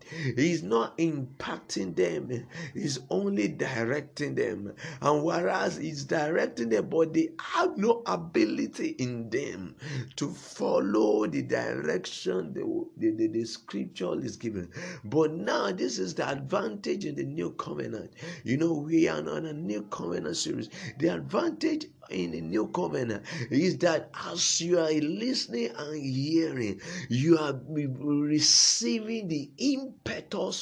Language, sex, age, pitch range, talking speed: English, male, 50-69, 125-165 Hz, 135 wpm